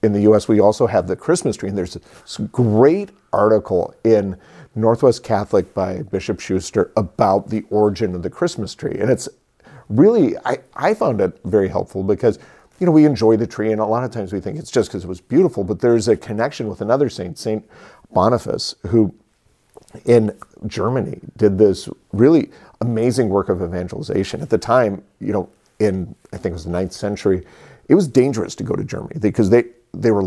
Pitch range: 95-115 Hz